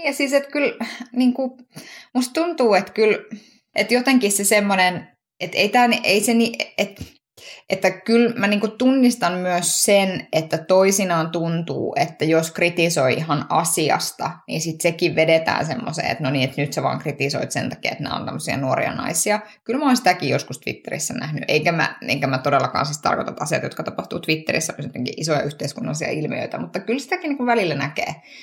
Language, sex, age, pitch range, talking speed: Finnish, female, 20-39, 145-210 Hz, 165 wpm